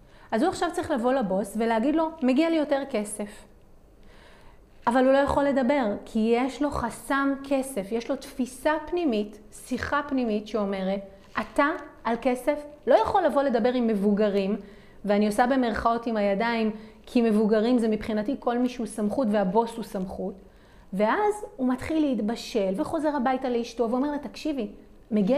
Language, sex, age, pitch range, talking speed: Hebrew, female, 30-49, 215-295 Hz, 155 wpm